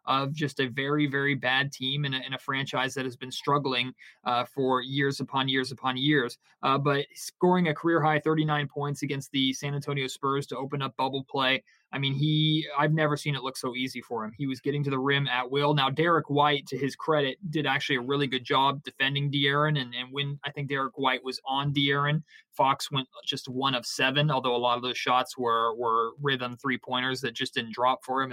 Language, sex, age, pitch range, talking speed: English, male, 20-39, 130-145 Hz, 225 wpm